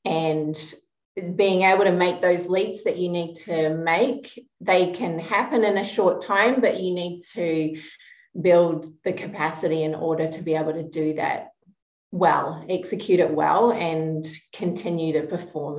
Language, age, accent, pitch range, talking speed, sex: English, 30-49, Australian, 160-215 Hz, 160 wpm, female